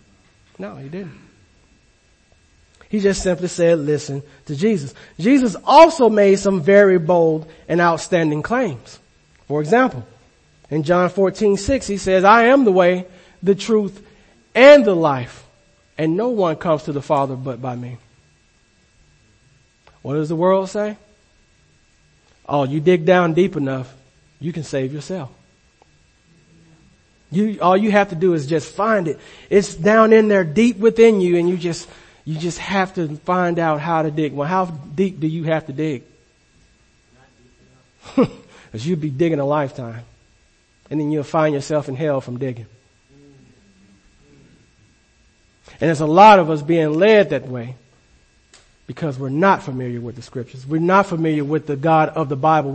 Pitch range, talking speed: 135-185 Hz, 160 wpm